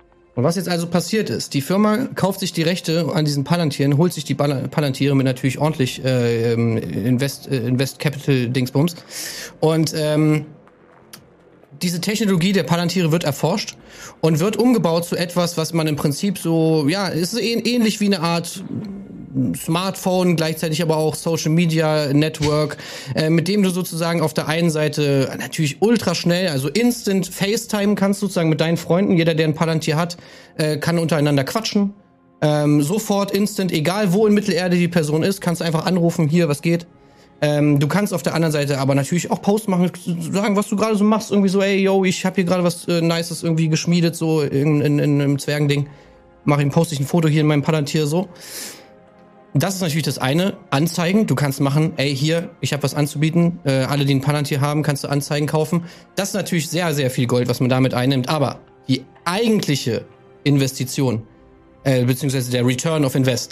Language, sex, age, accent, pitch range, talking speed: German, male, 30-49, German, 140-180 Hz, 185 wpm